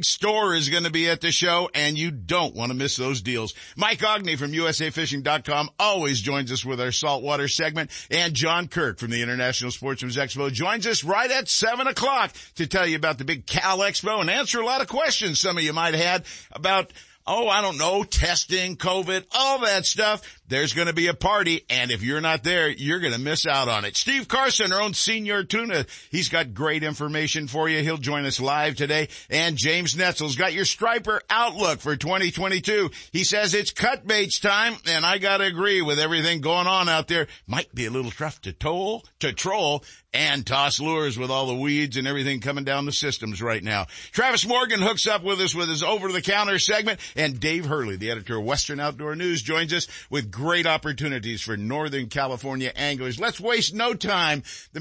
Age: 50-69